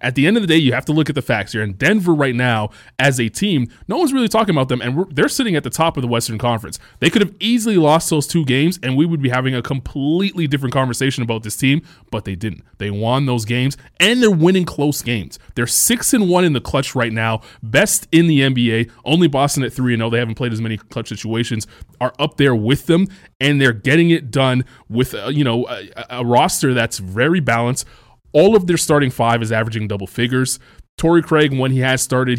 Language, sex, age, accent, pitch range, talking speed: English, male, 20-39, American, 115-150 Hz, 235 wpm